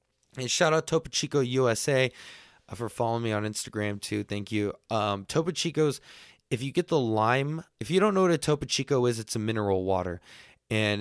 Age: 20-39